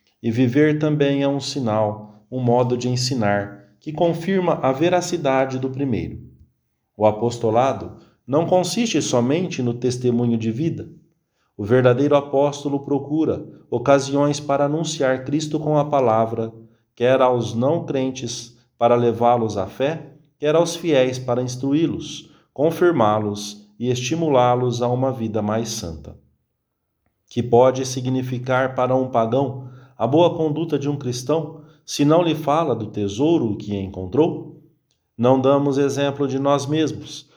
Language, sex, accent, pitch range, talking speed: English, male, Brazilian, 120-155 Hz, 130 wpm